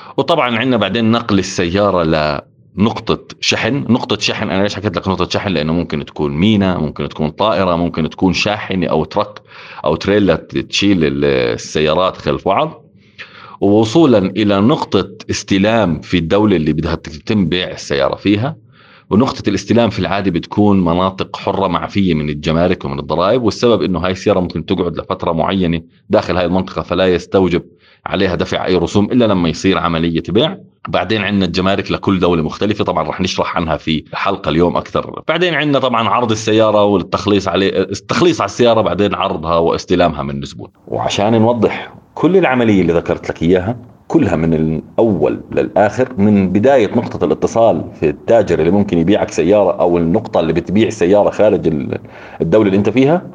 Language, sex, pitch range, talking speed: Arabic, male, 85-110 Hz, 155 wpm